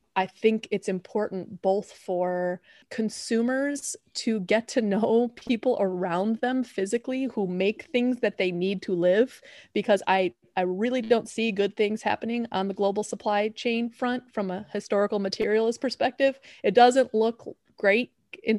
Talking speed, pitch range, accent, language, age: 155 wpm, 190-235 Hz, American, English, 30-49